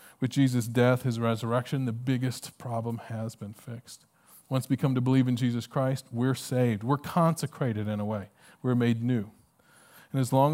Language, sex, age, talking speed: English, male, 40-59, 180 wpm